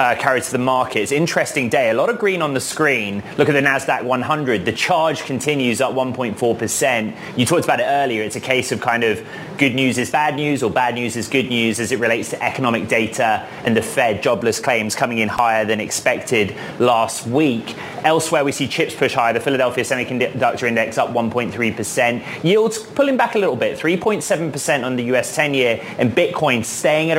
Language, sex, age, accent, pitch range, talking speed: English, male, 20-39, British, 120-160 Hz, 200 wpm